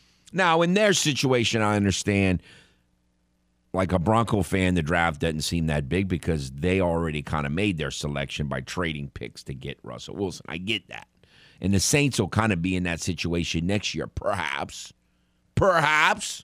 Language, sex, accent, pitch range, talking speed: English, male, American, 80-115 Hz, 175 wpm